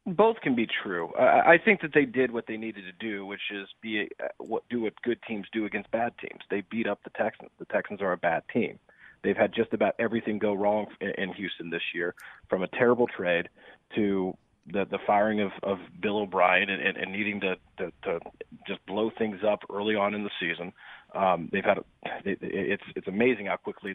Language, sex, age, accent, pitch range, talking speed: English, male, 30-49, American, 100-115 Hz, 225 wpm